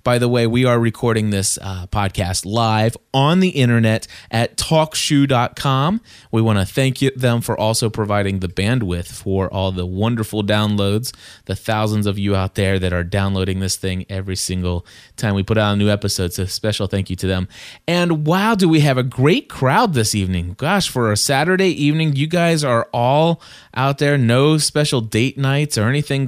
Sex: male